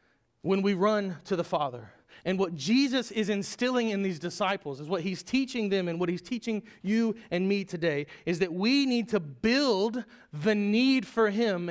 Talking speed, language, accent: 190 wpm, English, American